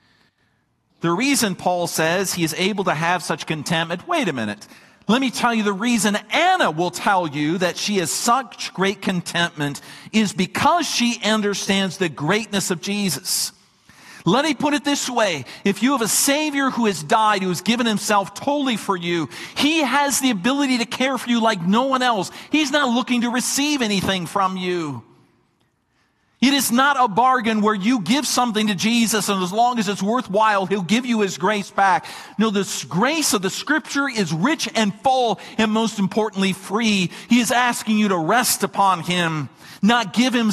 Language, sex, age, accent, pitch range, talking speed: English, male, 50-69, American, 185-245 Hz, 190 wpm